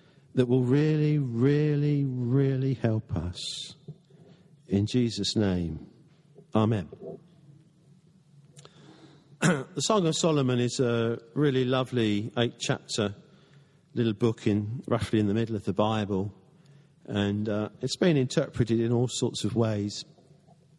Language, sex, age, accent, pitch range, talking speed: English, male, 50-69, British, 120-155 Hz, 115 wpm